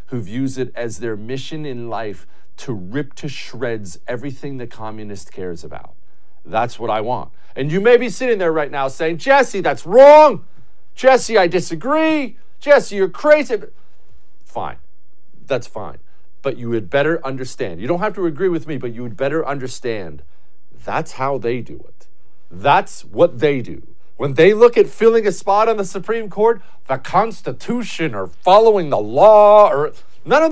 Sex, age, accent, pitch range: male, 40-59, American, 130-210 Hz